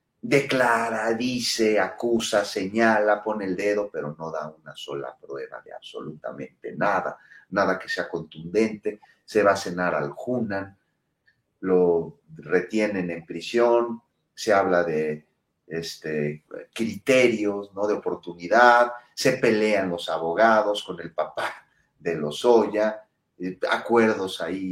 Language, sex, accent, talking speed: Spanish, male, Mexican, 120 wpm